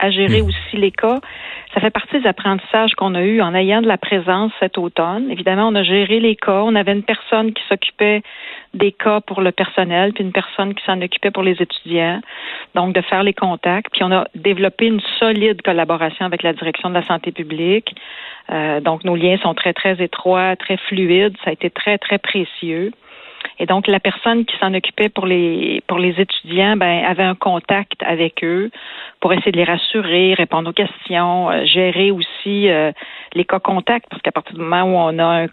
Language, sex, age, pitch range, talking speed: French, female, 50-69, 175-205 Hz, 210 wpm